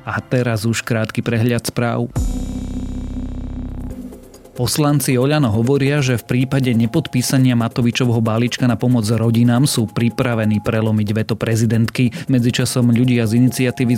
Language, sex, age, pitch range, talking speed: Slovak, male, 30-49, 110-125 Hz, 115 wpm